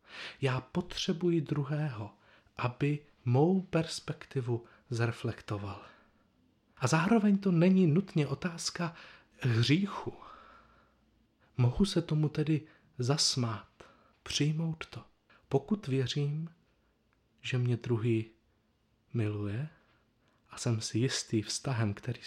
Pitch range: 115-145 Hz